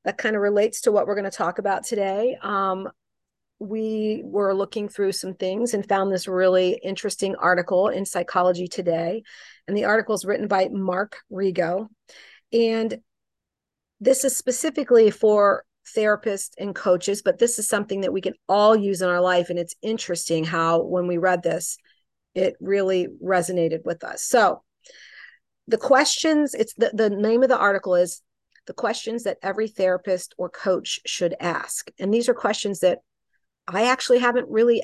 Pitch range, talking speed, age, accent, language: 185-220 Hz, 170 wpm, 40-59, American, English